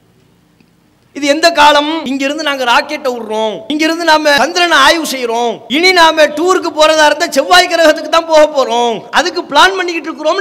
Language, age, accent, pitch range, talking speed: English, 20-39, Indian, 290-345 Hz, 200 wpm